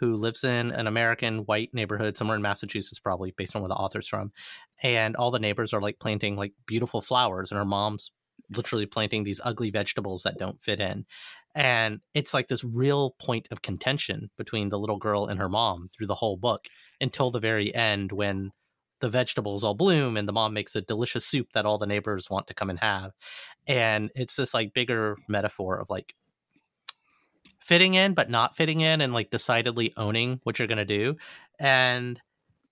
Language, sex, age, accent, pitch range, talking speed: English, male, 30-49, American, 100-130 Hz, 195 wpm